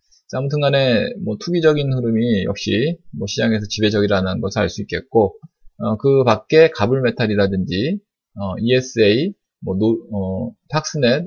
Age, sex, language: 20-39, male, Korean